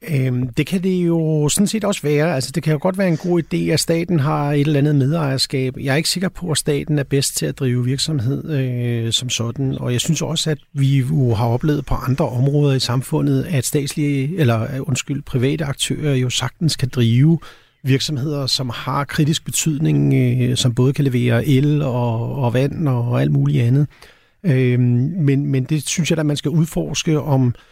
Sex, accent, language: male, native, Danish